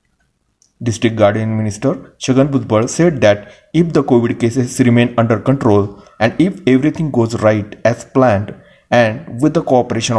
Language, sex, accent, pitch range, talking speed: Marathi, male, native, 105-130 Hz, 145 wpm